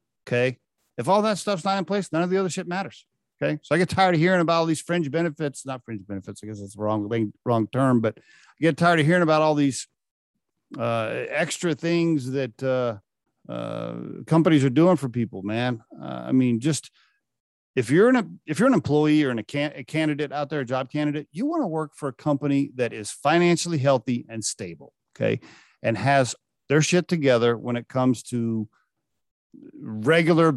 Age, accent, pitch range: 50-69, American, 120-170 Hz